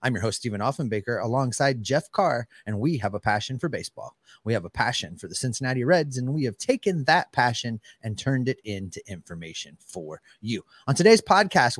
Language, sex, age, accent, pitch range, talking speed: English, male, 30-49, American, 120-165 Hz, 200 wpm